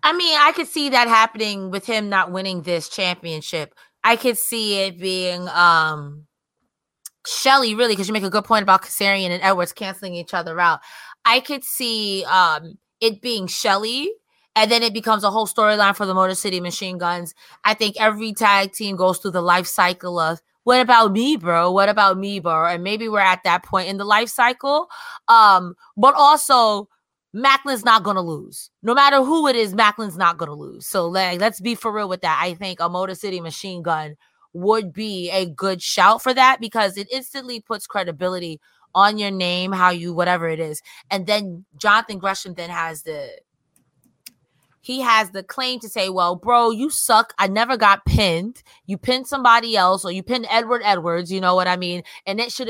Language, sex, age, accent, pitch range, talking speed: English, female, 20-39, American, 180-230 Hz, 195 wpm